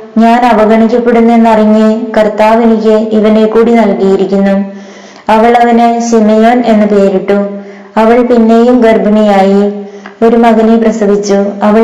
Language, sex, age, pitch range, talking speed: Malayalam, female, 20-39, 205-225 Hz, 95 wpm